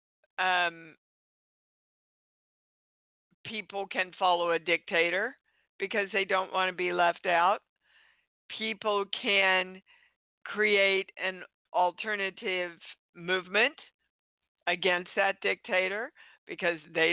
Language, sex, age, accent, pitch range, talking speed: English, female, 50-69, American, 170-215 Hz, 90 wpm